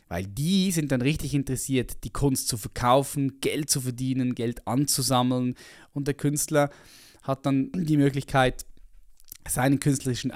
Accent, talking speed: German, 140 wpm